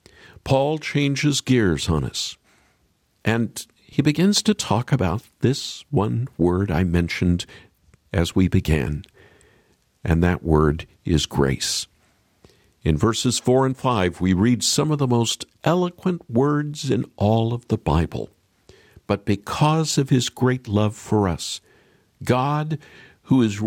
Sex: male